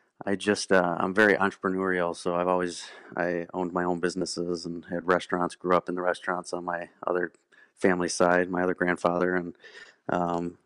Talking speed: 170 wpm